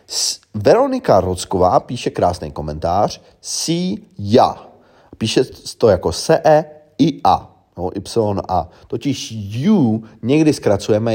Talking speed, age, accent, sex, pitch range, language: 100 wpm, 30-49, native, male, 90-115 Hz, Czech